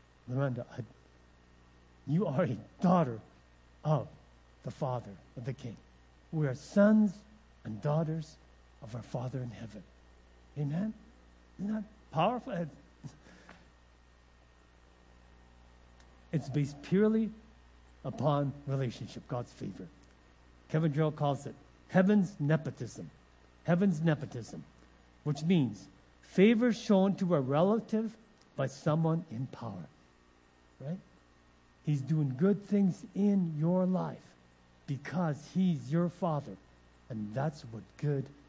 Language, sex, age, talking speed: English, male, 60-79, 105 wpm